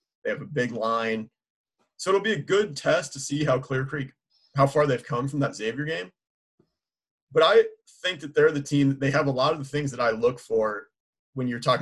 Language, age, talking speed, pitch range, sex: English, 30-49, 230 wpm, 115-145 Hz, male